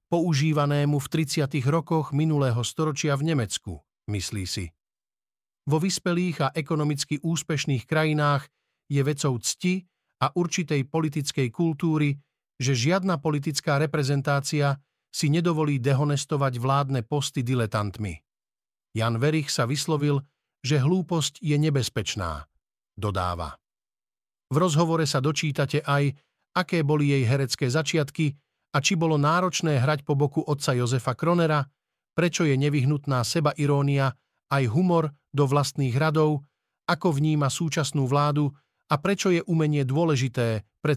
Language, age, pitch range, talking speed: Slovak, 50-69, 130-155 Hz, 120 wpm